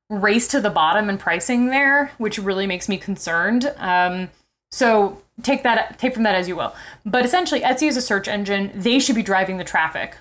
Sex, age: female, 20-39